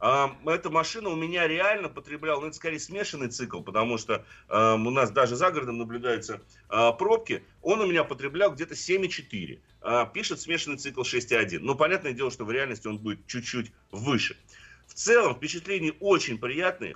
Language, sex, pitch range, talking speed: Russian, male, 125-170 Hz, 160 wpm